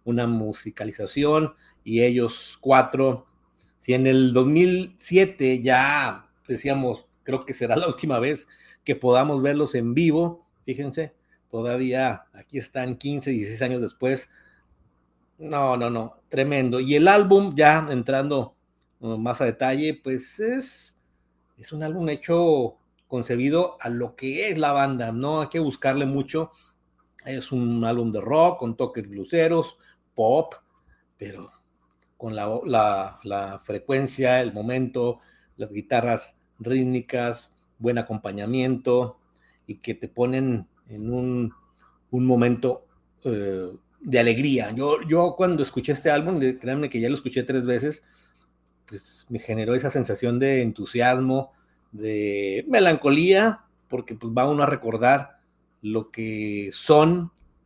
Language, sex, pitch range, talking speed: Spanish, male, 110-140 Hz, 130 wpm